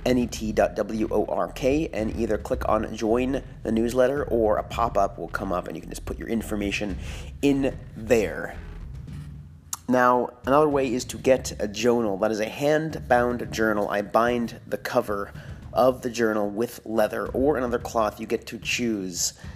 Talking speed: 160 wpm